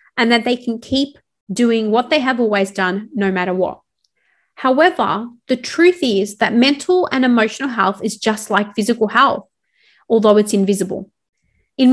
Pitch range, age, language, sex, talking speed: 210-270 Hz, 30-49, English, female, 160 wpm